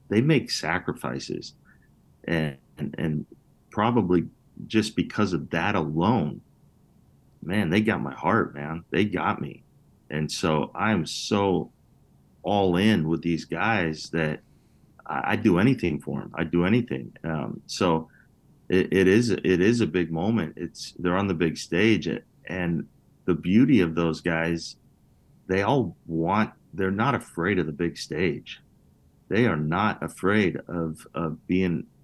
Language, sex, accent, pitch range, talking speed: English, male, American, 75-90 Hz, 150 wpm